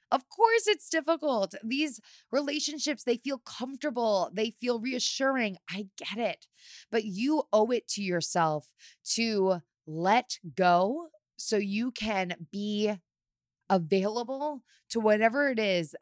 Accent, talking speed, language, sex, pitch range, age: American, 125 wpm, English, female, 160-215 Hz, 20-39